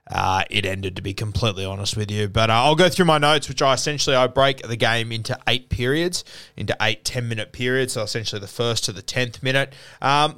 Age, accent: 20-39, Australian